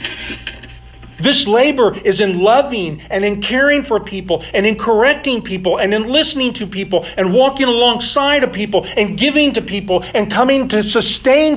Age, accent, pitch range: 50-69, American, 145-210 Hz